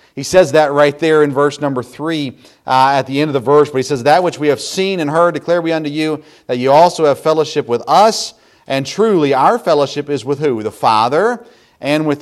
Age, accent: 40-59, American